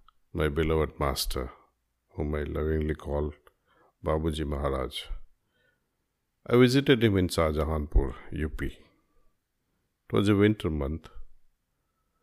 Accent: native